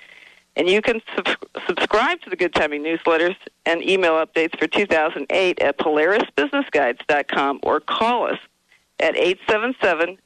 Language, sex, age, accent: English, female, 50-69, American